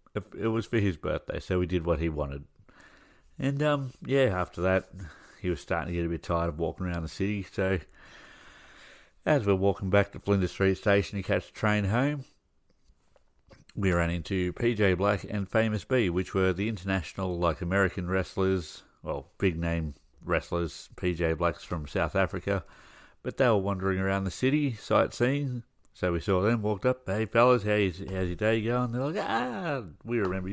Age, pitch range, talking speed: 60-79, 85-110 Hz, 180 wpm